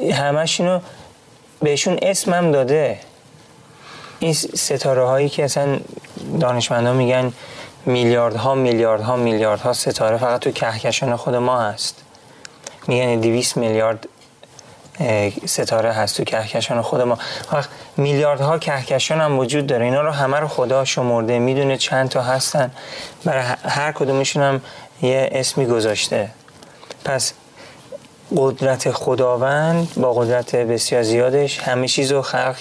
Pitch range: 120-145 Hz